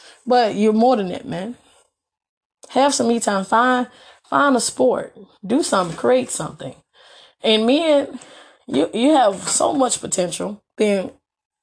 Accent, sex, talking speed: American, female, 140 wpm